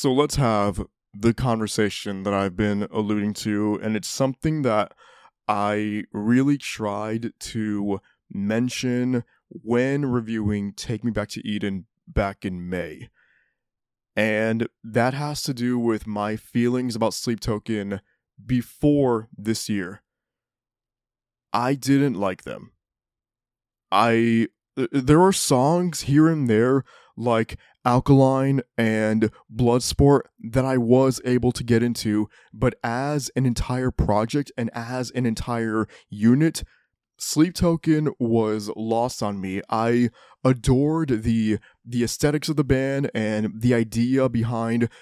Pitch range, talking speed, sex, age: 110-130 Hz, 125 wpm, male, 20-39